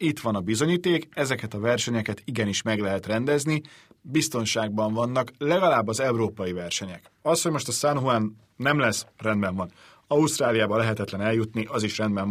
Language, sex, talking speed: Hungarian, male, 160 wpm